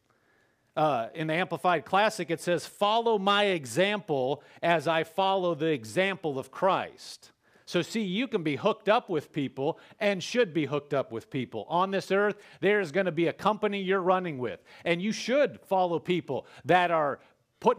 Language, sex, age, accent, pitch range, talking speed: English, male, 40-59, American, 150-200 Hz, 180 wpm